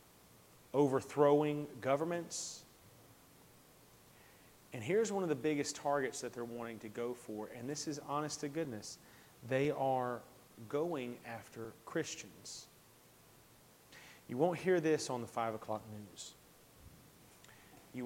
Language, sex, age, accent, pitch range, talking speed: English, male, 30-49, American, 115-140 Hz, 120 wpm